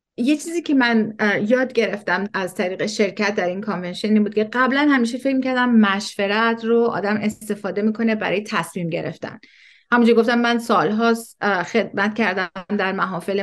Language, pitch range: Persian, 195-235 Hz